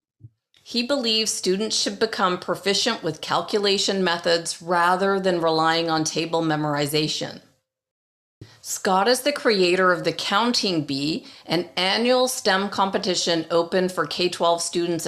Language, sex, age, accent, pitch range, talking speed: English, female, 40-59, American, 160-200 Hz, 125 wpm